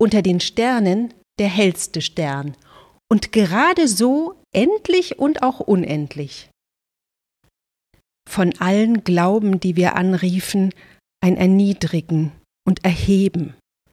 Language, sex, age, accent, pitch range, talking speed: German, female, 40-59, German, 165-225 Hz, 100 wpm